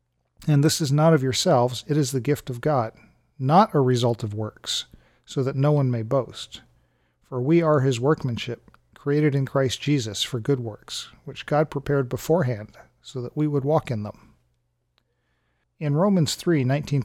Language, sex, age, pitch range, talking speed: English, male, 40-59, 120-150 Hz, 175 wpm